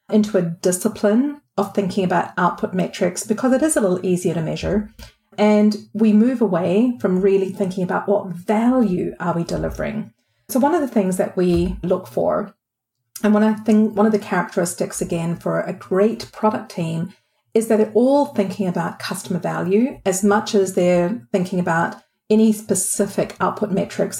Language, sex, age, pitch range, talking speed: English, female, 40-59, 185-220 Hz, 175 wpm